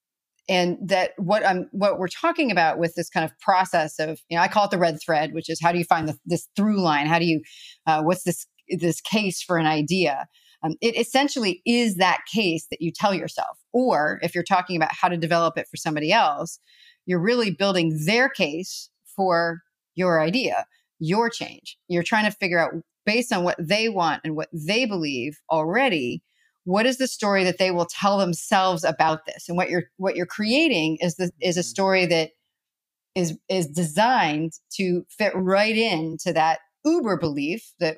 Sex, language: female, English